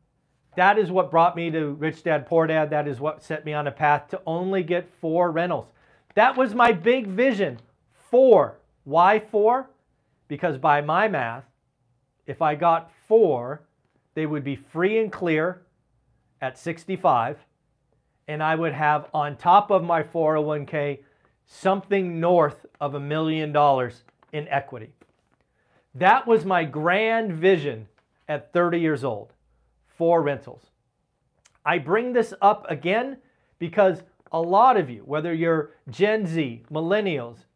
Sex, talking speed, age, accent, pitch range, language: male, 145 wpm, 40-59, American, 145-190 Hz, English